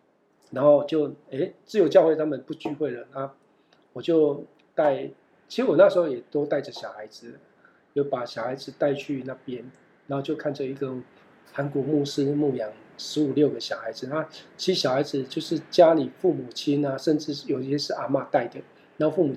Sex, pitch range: male, 135-160 Hz